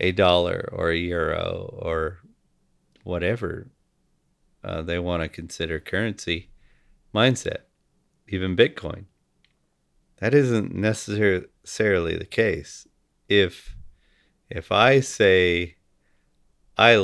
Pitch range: 80-95 Hz